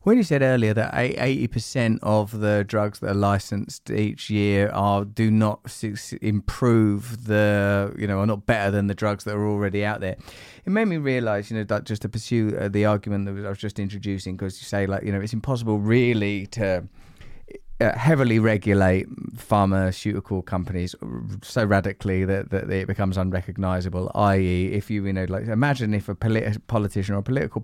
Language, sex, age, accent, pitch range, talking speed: English, male, 30-49, British, 100-115 Hz, 185 wpm